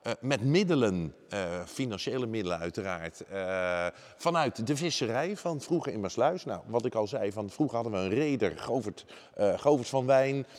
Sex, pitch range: male, 105-150 Hz